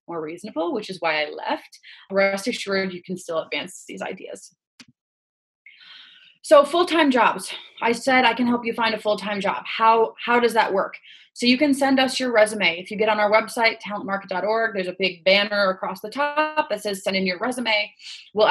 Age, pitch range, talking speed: 30-49, 185-225 Hz, 200 wpm